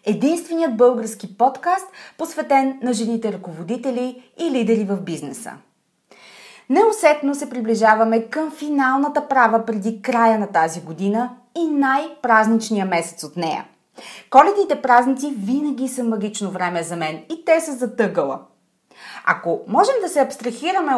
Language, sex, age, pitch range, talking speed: Bulgarian, female, 30-49, 205-275 Hz, 125 wpm